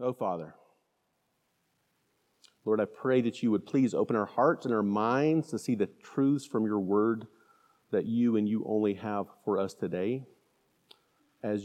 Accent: American